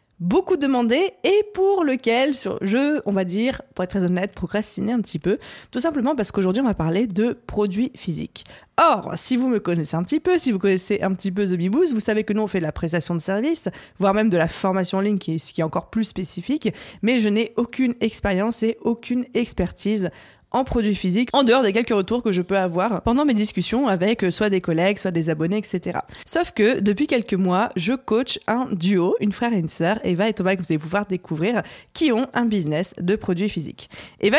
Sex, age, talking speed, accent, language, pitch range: female, 20-39, 225 wpm, French, French, 185-240 Hz